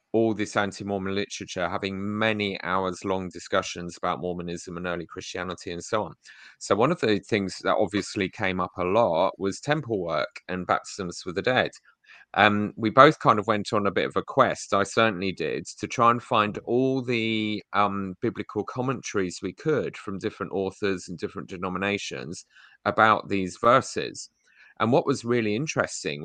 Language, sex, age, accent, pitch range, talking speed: English, male, 30-49, British, 95-110 Hz, 175 wpm